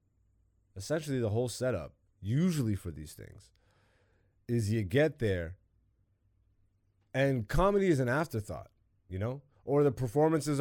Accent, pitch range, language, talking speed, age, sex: American, 100-135 Hz, English, 125 wpm, 30-49, male